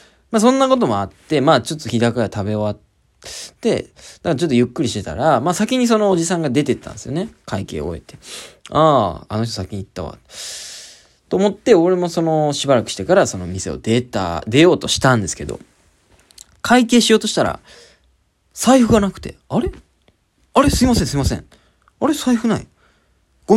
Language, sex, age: Japanese, male, 20-39